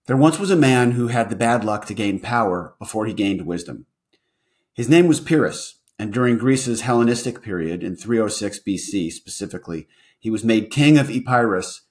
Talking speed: 180 wpm